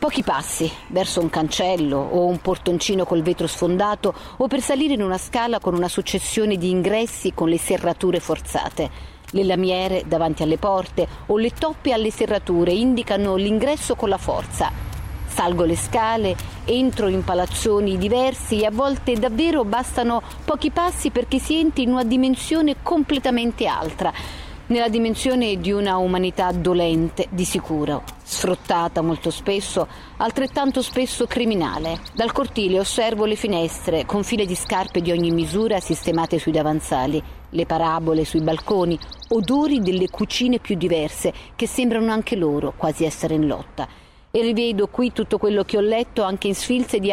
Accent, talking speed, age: native, 155 wpm, 40-59